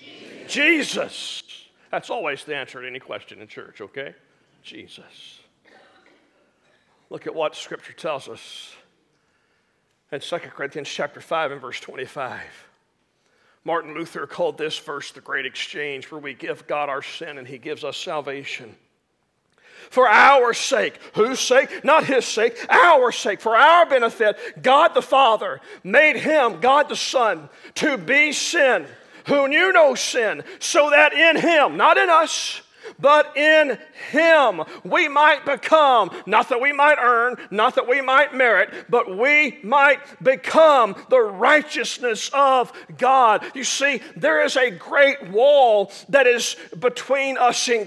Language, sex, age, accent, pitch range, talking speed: English, male, 40-59, American, 245-305 Hz, 145 wpm